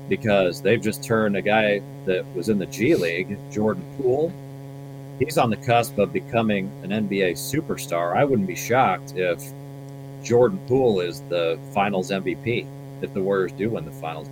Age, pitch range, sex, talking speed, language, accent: 40-59, 100-140 Hz, male, 170 wpm, English, American